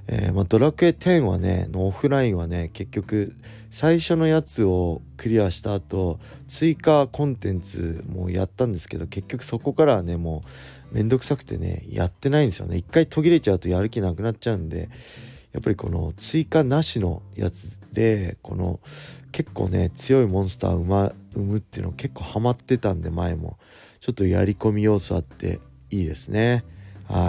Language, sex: Japanese, male